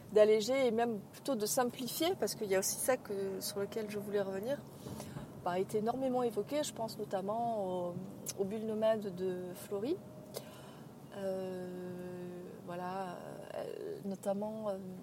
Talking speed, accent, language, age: 140 wpm, French, French, 30-49